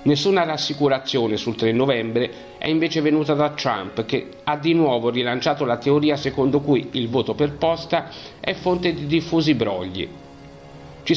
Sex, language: male, Italian